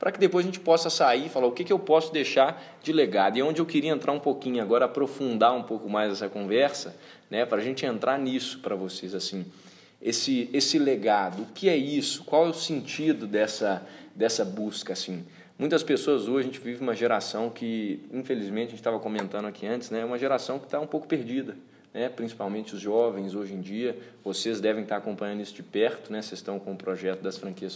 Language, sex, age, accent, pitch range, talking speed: Portuguese, male, 20-39, Brazilian, 115-155 Hz, 225 wpm